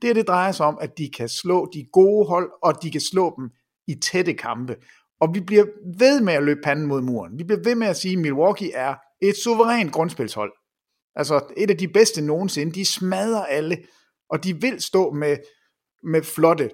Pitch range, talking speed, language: 130-195 Hz, 210 wpm, English